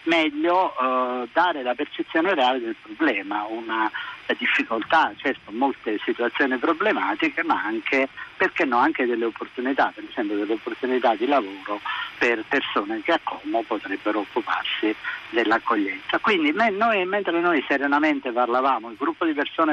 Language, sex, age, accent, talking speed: Italian, male, 50-69, native, 135 wpm